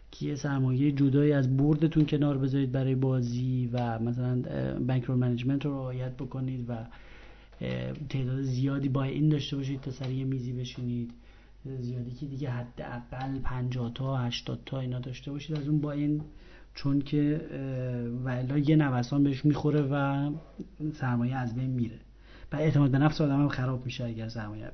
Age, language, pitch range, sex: 40-59, Persian, 130-160 Hz, male